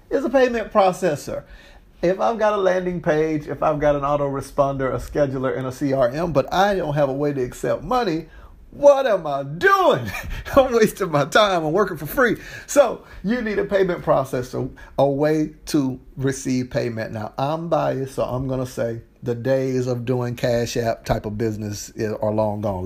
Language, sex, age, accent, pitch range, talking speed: English, male, 50-69, American, 120-155 Hz, 190 wpm